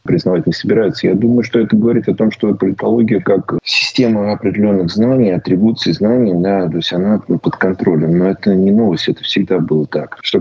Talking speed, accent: 190 wpm, native